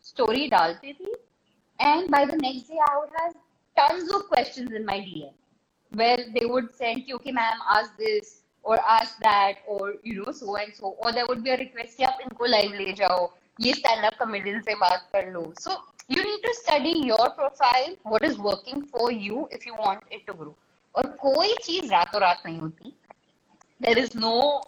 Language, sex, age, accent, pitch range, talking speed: Hindi, female, 20-39, native, 215-280 Hz, 125 wpm